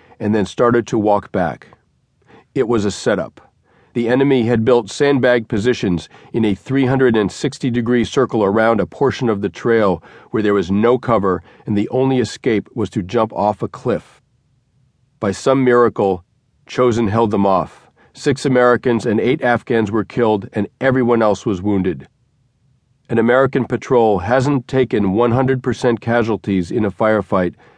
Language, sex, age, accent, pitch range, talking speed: English, male, 40-59, American, 105-125 Hz, 150 wpm